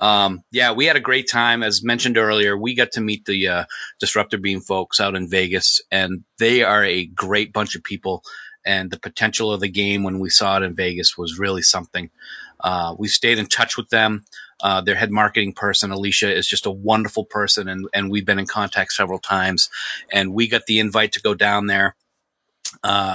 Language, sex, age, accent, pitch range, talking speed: English, male, 30-49, American, 100-115 Hz, 210 wpm